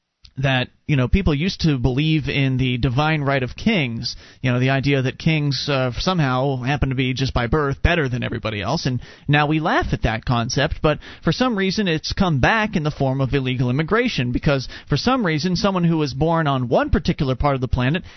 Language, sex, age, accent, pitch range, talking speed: English, male, 30-49, American, 130-180 Hz, 220 wpm